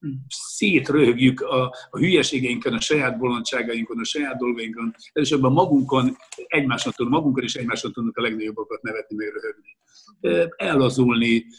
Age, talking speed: 60-79, 130 wpm